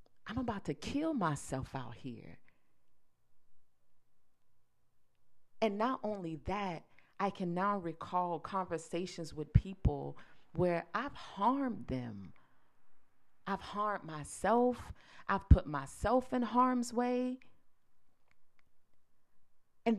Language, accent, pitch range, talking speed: English, American, 150-225 Hz, 95 wpm